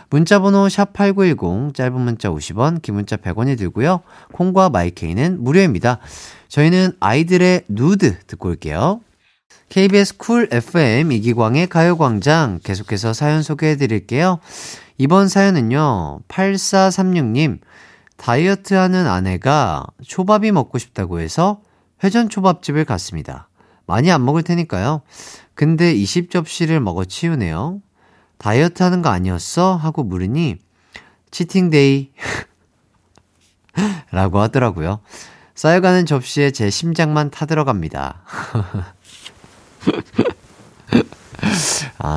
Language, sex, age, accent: Korean, male, 40-59, native